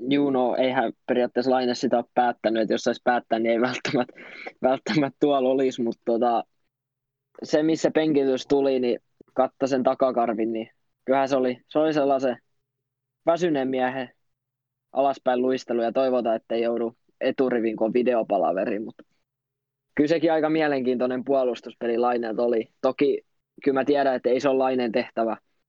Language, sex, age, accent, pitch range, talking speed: Finnish, male, 20-39, native, 120-135 Hz, 140 wpm